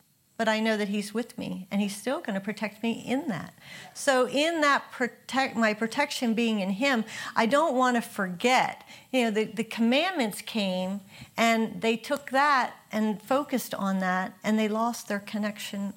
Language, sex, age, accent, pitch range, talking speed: English, female, 50-69, American, 195-255 Hz, 185 wpm